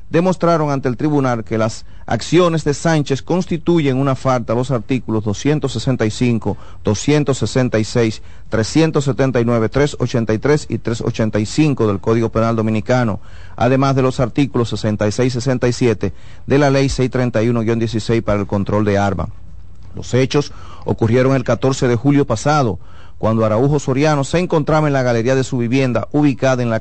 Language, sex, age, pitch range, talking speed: Spanish, male, 40-59, 110-140 Hz, 140 wpm